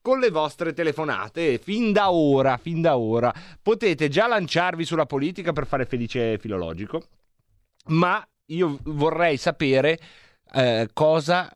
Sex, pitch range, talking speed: male, 120-155 Hz, 130 wpm